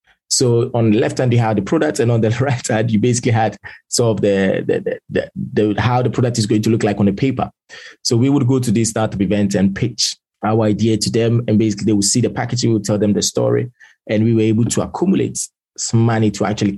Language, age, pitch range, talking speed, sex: English, 20-39, 95-115 Hz, 255 wpm, male